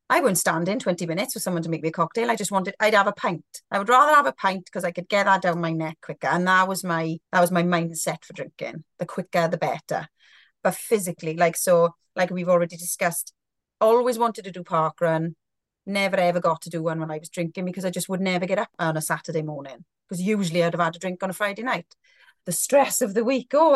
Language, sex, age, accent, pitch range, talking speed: English, female, 30-49, British, 165-200 Hz, 255 wpm